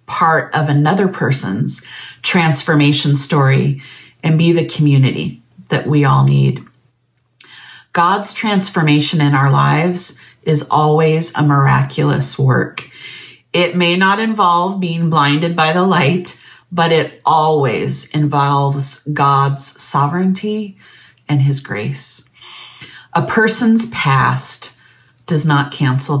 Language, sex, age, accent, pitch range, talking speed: English, female, 40-59, American, 140-170 Hz, 110 wpm